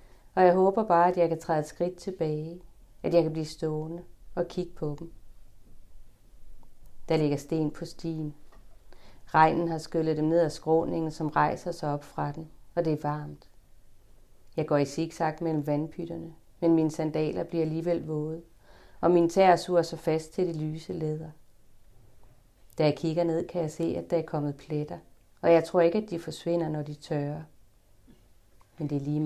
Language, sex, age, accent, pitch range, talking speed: Danish, female, 30-49, native, 125-165 Hz, 185 wpm